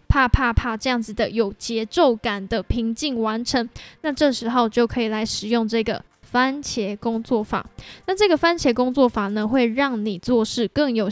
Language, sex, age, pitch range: Chinese, female, 10-29, 230-270 Hz